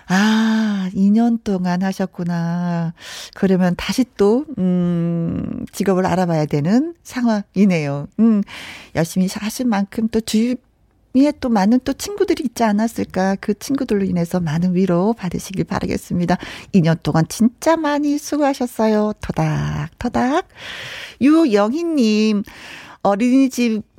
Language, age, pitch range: Korean, 40-59, 180-235 Hz